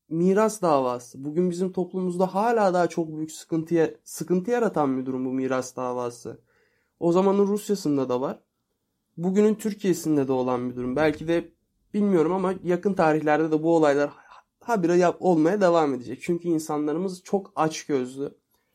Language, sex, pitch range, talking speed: Turkish, male, 145-185 Hz, 145 wpm